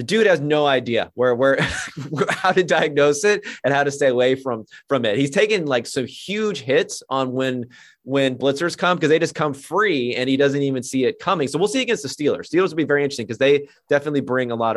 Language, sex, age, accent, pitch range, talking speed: English, male, 30-49, American, 125-170 Hz, 240 wpm